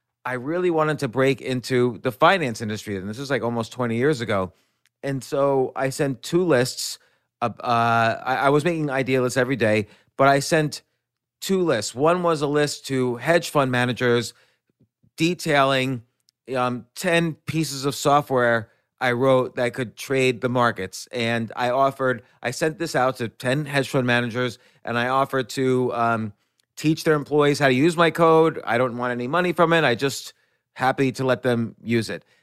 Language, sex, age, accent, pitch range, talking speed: English, male, 30-49, American, 125-150 Hz, 180 wpm